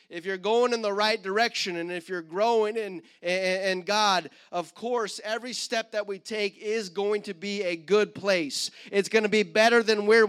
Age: 30-49